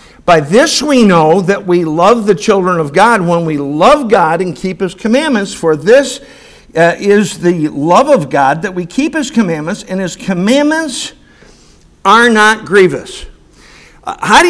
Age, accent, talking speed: 50-69, American, 170 wpm